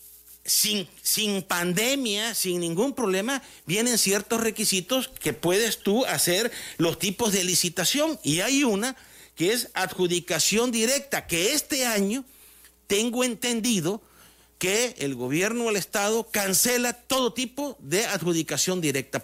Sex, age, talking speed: male, 50-69, 130 wpm